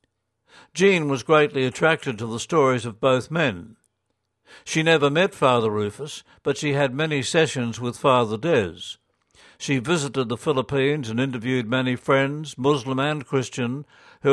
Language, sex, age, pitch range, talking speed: English, male, 60-79, 125-145 Hz, 145 wpm